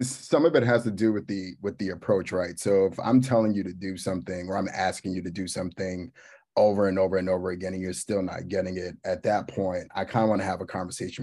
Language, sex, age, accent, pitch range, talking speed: English, male, 30-49, American, 95-105 Hz, 265 wpm